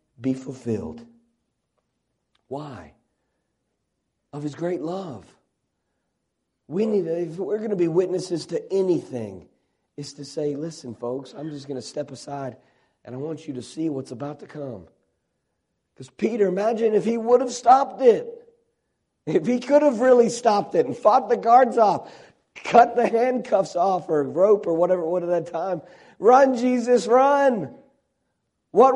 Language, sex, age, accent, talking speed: English, male, 50-69, American, 155 wpm